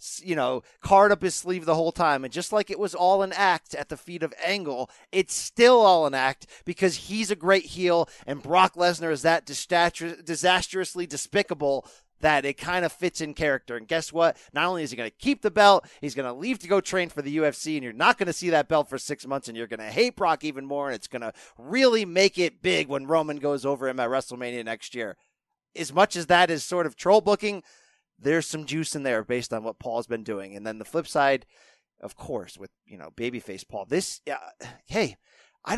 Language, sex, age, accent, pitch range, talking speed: English, male, 30-49, American, 140-190 Hz, 235 wpm